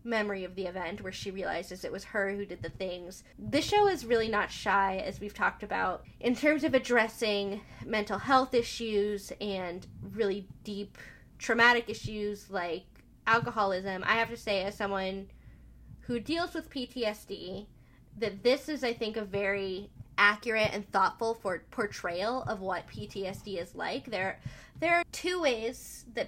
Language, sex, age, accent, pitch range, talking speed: English, female, 10-29, American, 190-225 Hz, 160 wpm